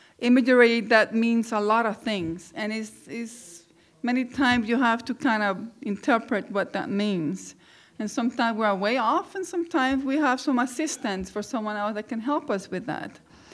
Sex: female